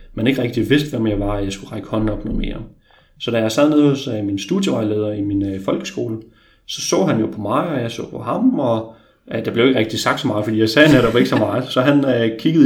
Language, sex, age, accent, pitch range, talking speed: Danish, male, 30-49, native, 100-125 Hz, 280 wpm